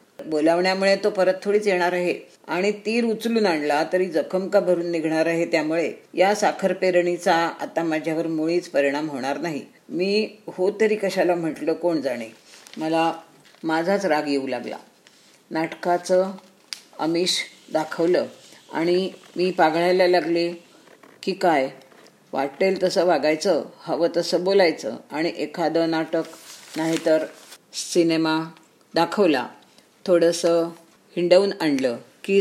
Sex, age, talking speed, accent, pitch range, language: female, 50-69, 110 wpm, native, 160-190 Hz, Marathi